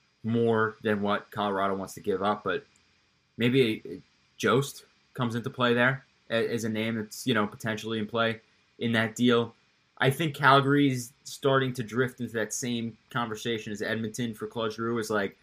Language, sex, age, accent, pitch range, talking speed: English, male, 20-39, American, 105-125 Hz, 165 wpm